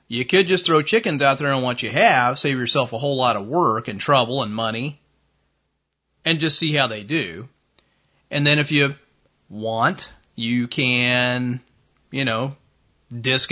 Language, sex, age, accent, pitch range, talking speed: English, male, 30-49, American, 115-145 Hz, 170 wpm